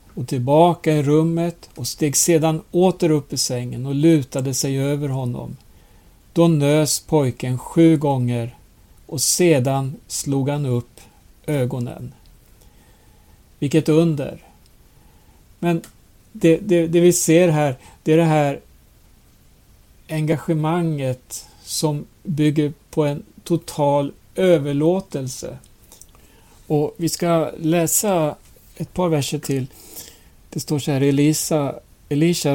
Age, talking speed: 60-79, 110 wpm